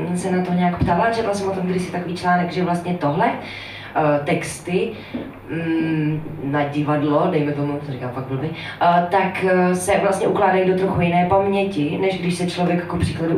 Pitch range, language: 160-190 Hz, Czech